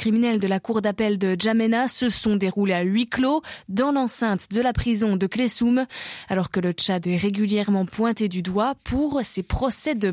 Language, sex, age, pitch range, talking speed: French, female, 20-39, 200-250 Hz, 195 wpm